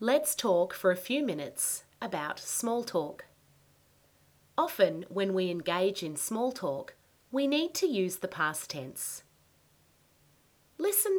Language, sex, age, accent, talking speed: English, female, 30-49, Australian, 130 wpm